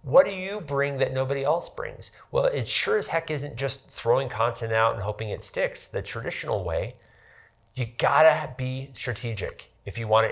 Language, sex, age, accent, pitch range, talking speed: English, male, 40-59, American, 105-140 Hz, 185 wpm